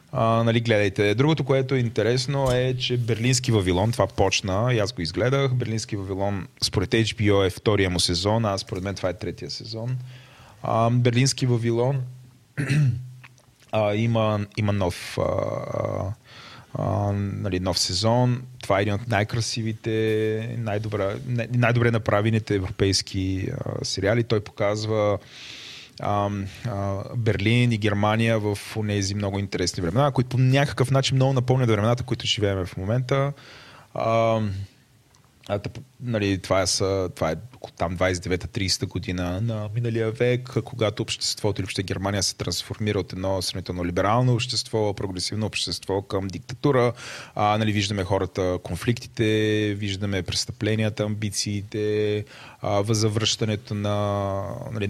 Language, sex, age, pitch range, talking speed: Bulgarian, male, 20-39, 95-120 Hz, 125 wpm